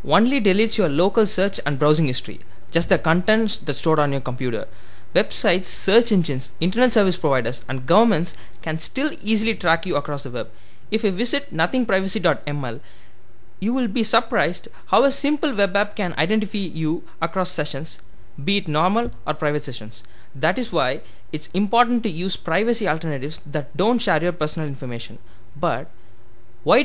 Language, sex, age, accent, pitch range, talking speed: Tamil, male, 20-39, native, 135-215 Hz, 165 wpm